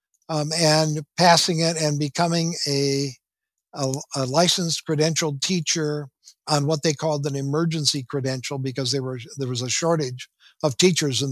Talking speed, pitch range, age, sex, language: 155 wpm, 145-180 Hz, 60-79, male, English